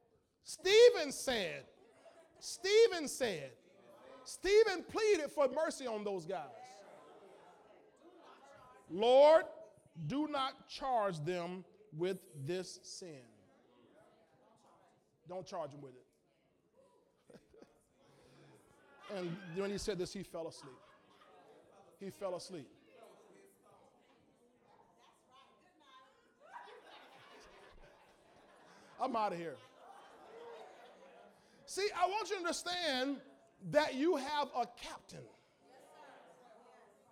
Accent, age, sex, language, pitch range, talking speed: American, 40-59, male, English, 185-290 Hz, 80 wpm